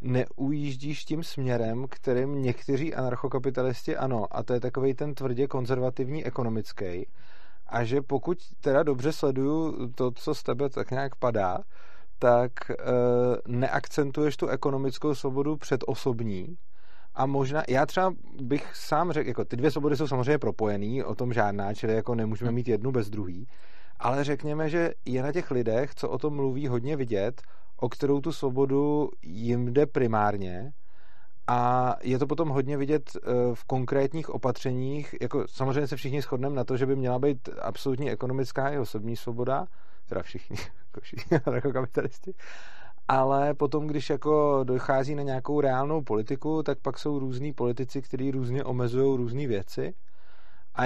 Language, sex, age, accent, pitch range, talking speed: Czech, male, 30-49, native, 120-140 Hz, 155 wpm